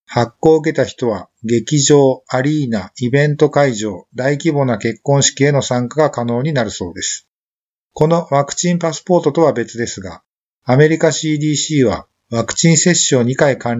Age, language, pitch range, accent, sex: 50-69, Japanese, 120-150 Hz, native, male